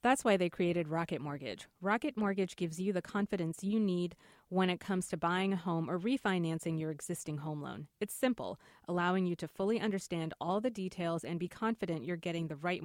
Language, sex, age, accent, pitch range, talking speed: English, female, 30-49, American, 165-205 Hz, 205 wpm